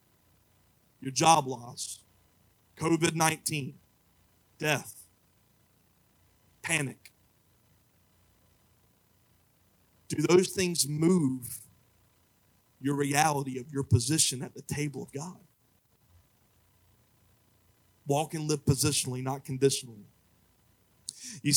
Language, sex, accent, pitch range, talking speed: English, male, American, 110-150 Hz, 75 wpm